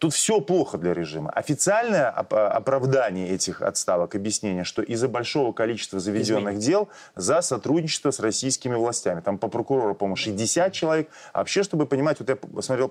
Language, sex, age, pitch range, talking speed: Russian, male, 30-49, 110-145 Hz, 155 wpm